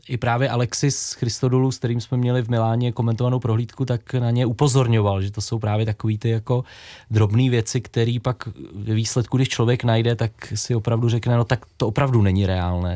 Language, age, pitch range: Czech, 20-39, 110-130 Hz